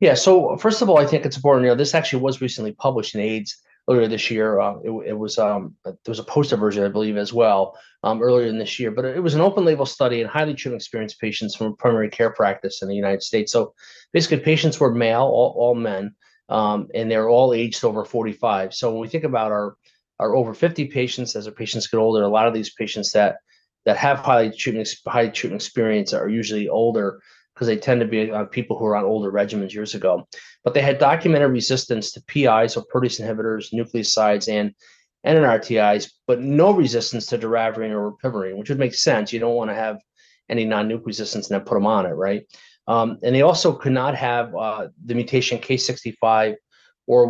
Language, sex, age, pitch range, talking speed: English, male, 30-49, 110-130 Hz, 215 wpm